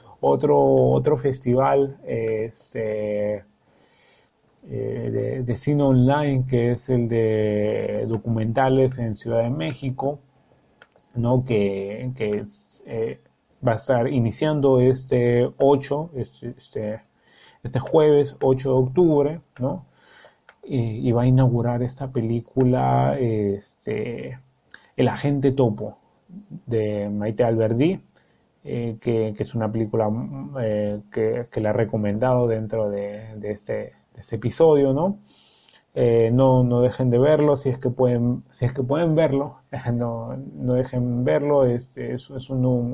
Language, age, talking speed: Spanish, 30-49, 125 wpm